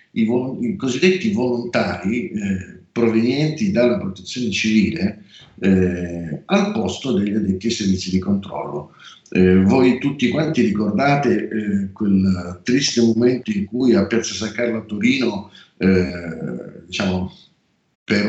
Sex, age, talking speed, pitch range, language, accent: male, 50-69, 120 wpm, 95-140 Hz, Italian, native